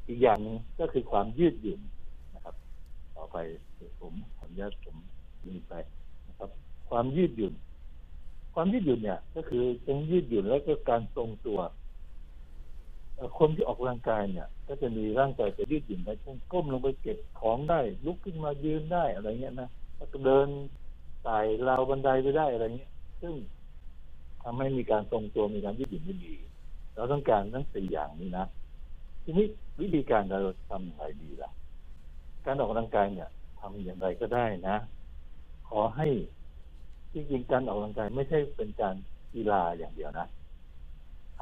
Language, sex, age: Thai, male, 60-79